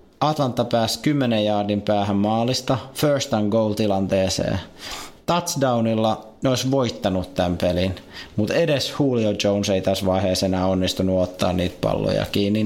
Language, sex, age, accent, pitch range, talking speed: Finnish, male, 20-39, native, 95-115 Hz, 135 wpm